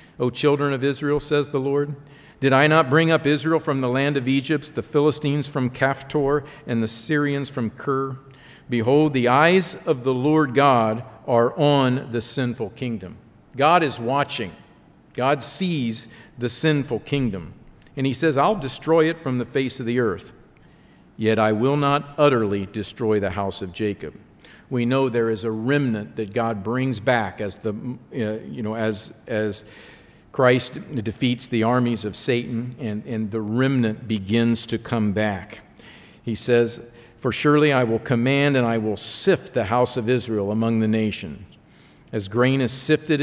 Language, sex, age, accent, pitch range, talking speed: English, male, 50-69, American, 110-140 Hz, 170 wpm